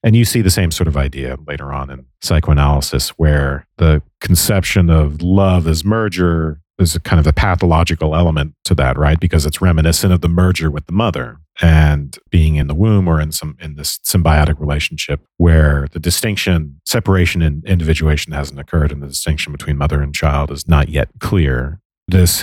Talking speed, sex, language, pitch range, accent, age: 185 wpm, male, English, 75-90 Hz, American, 40-59